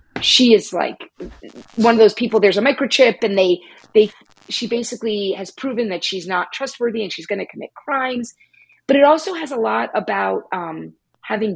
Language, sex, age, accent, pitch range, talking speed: English, female, 30-49, American, 210-285 Hz, 180 wpm